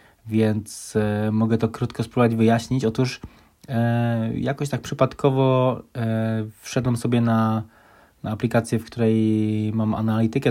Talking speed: 110 wpm